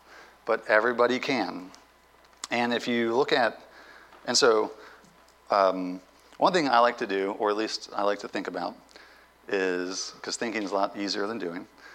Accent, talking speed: American, 170 wpm